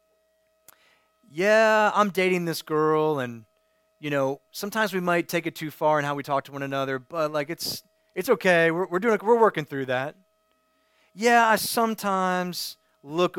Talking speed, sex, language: 170 wpm, male, English